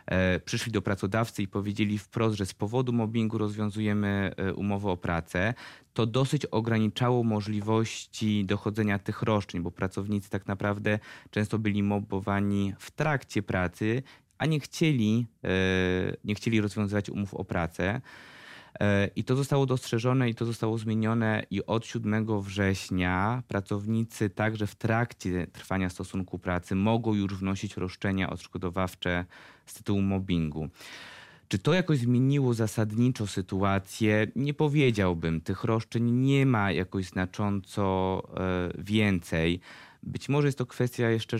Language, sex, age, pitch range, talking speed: Polish, male, 20-39, 95-115 Hz, 125 wpm